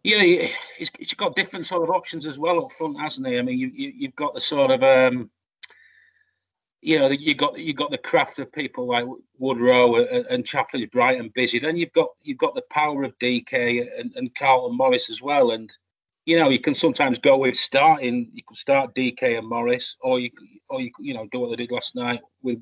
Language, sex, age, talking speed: English, male, 30-49, 225 wpm